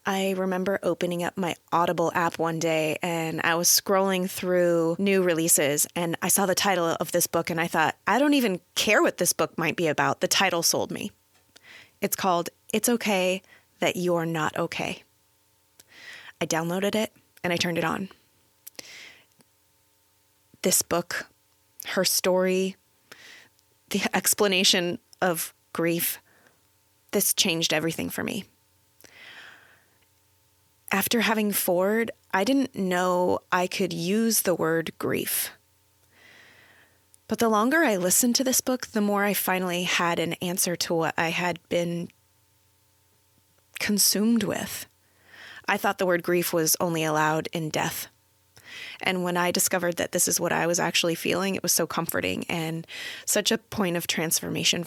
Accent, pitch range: American, 165-195 Hz